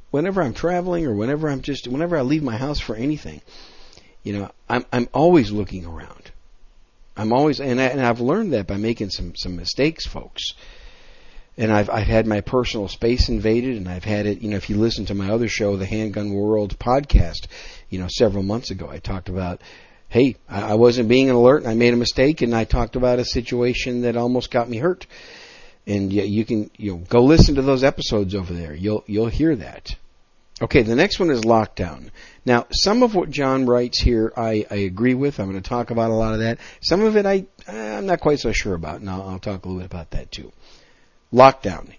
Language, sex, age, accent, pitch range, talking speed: English, male, 50-69, American, 100-135 Hz, 225 wpm